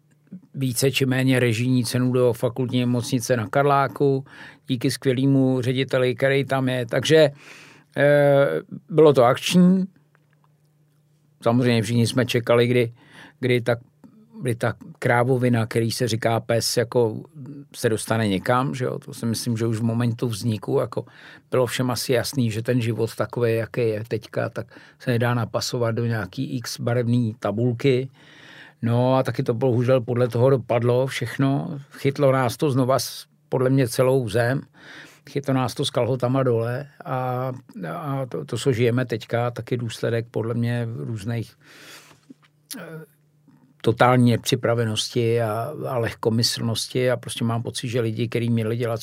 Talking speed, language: 145 wpm, Czech